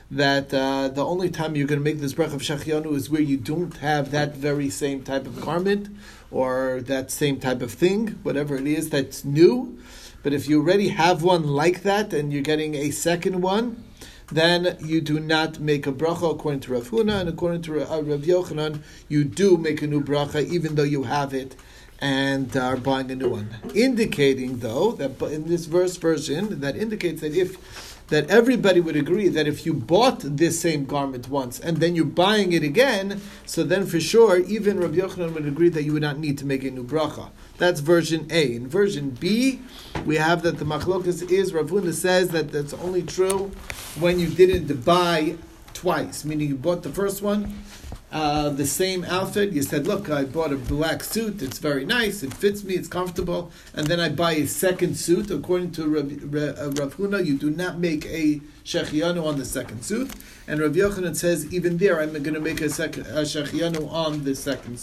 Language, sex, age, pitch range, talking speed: English, male, 40-59, 145-180 Hz, 200 wpm